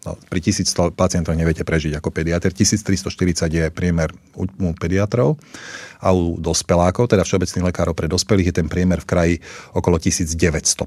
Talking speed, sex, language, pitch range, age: 155 wpm, male, Slovak, 90-105 Hz, 40-59